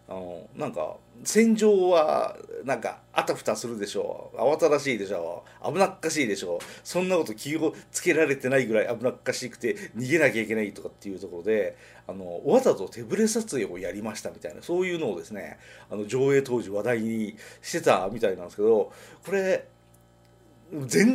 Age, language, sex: 40-59, Japanese, male